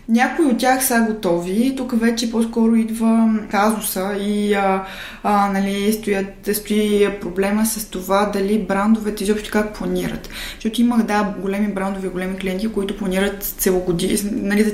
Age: 20-39